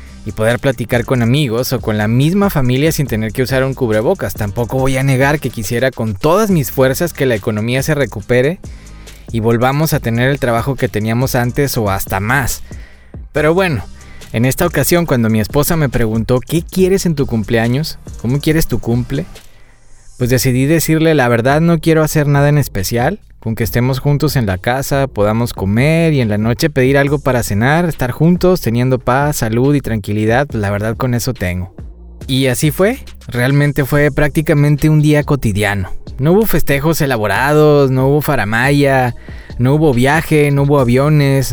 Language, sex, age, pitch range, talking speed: Spanish, male, 20-39, 115-145 Hz, 180 wpm